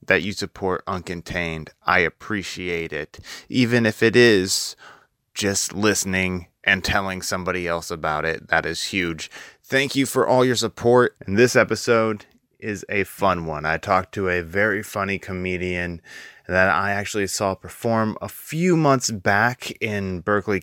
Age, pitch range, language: 20-39, 100-130 Hz, English